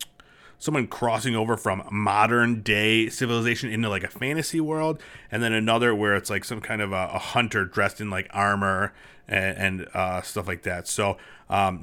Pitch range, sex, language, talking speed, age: 100-120 Hz, male, English, 185 wpm, 30-49